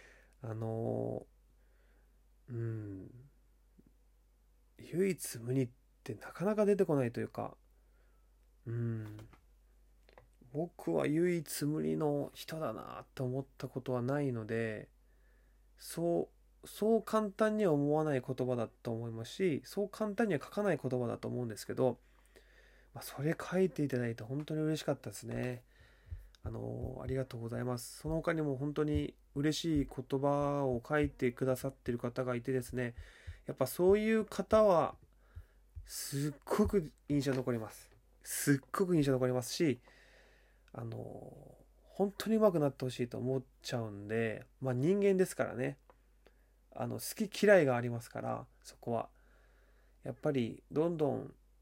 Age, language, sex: 20-39, Japanese, male